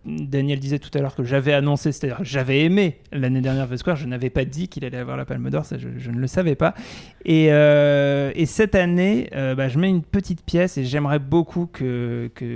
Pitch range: 125-155 Hz